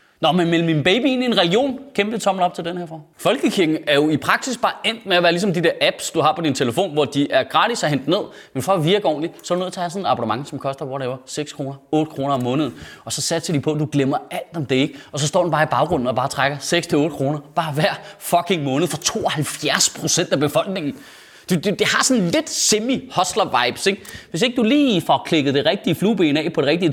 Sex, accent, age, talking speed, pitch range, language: male, native, 30-49, 260 wpm, 150-225 Hz, Danish